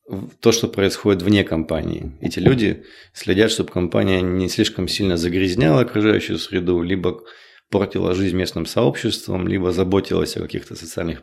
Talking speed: 140 wpm